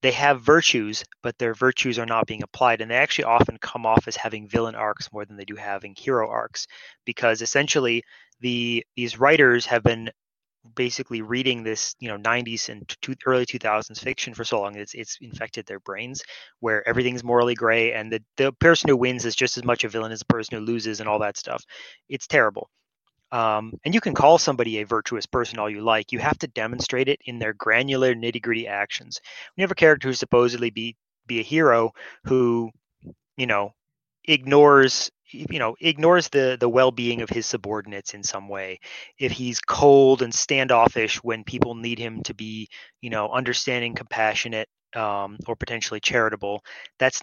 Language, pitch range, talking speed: English, 110-130 Hz, 190 wpm